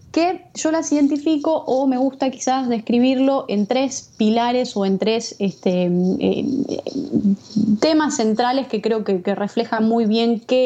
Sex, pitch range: female, 200-260 Hz